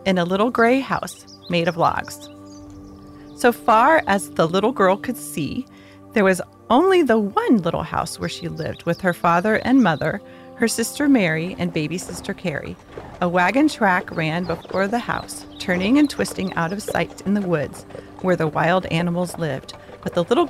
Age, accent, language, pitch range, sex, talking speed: 40-59, American, English, 165-235 Hz, female, 180 wpm